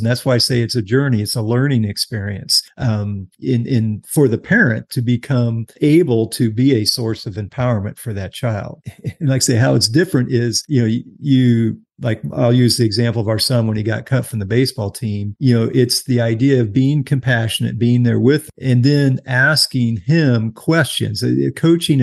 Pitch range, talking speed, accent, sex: 110-130 Hz, 205 wpm, American, male